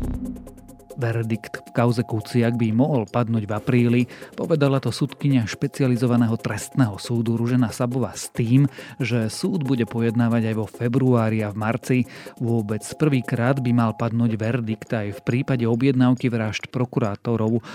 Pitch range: 110-130 Hz